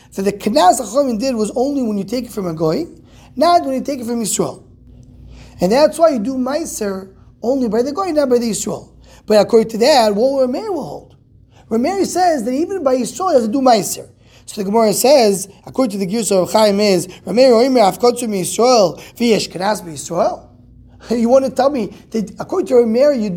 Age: 20-39